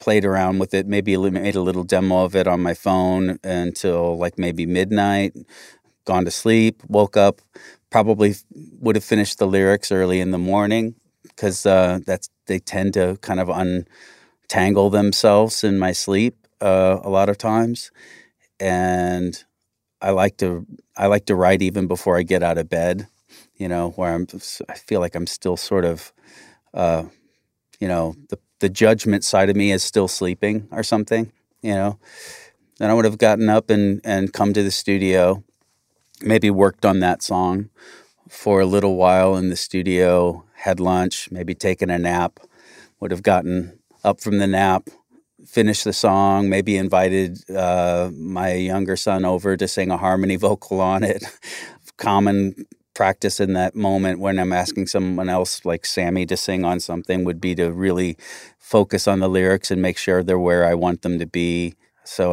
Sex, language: male, English